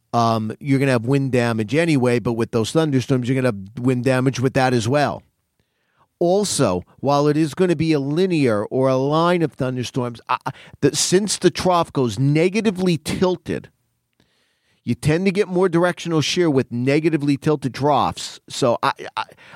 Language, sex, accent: English, male, American